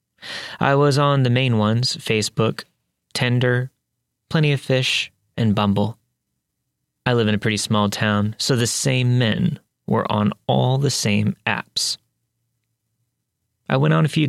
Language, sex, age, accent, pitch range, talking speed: English, male, 30-49, American, 110-140 Hz, 145 wpm